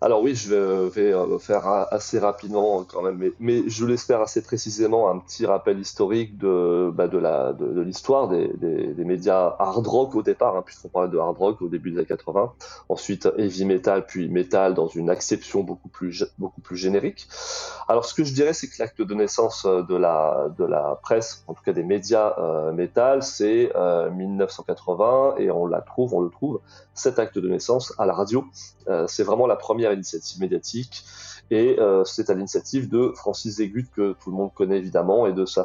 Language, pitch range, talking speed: French, 95-130 Hz, 200 wpm